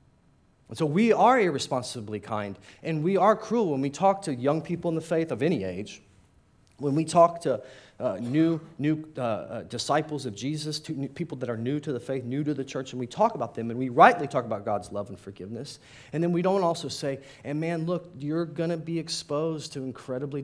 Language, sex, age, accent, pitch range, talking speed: English, male, 30-49, American, 110-150 Hz, 225 wpm